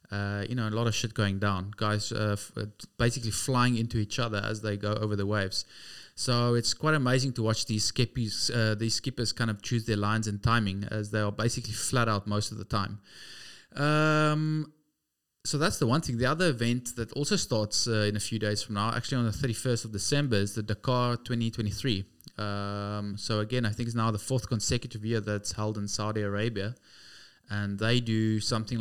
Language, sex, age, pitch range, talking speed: English, male, 20-39, 105-120 Hz, 200 wpm